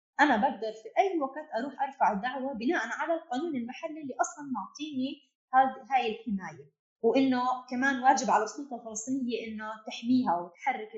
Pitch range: 200-275 Hz